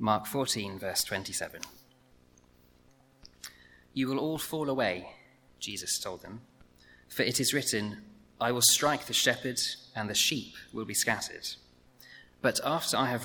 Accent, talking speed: British, 140 wpm